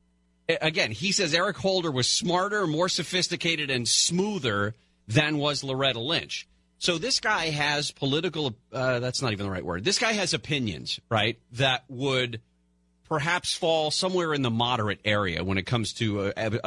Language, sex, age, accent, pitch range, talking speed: English, male, 40-59, American, 105-160 Hz, 160 wpm